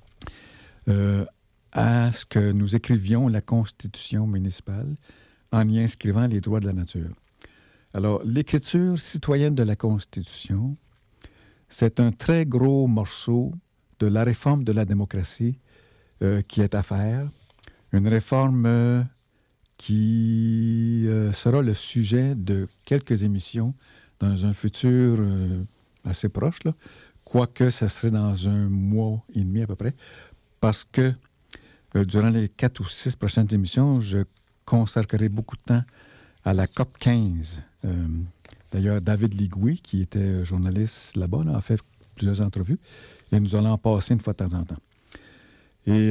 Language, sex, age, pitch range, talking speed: French, male, 60-79, 100-120 Hz, 145 wpm